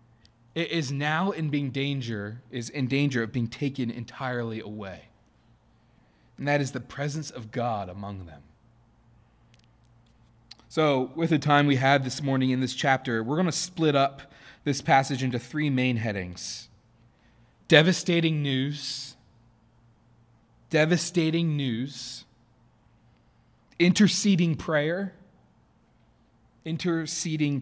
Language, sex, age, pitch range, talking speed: English, male, 30-49, 120-160 Hz, 115 wpm